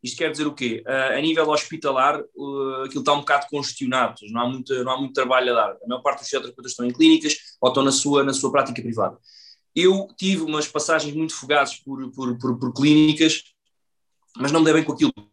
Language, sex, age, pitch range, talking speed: Portuguese, male, 20-39, 135-170 Hz, 225 wpm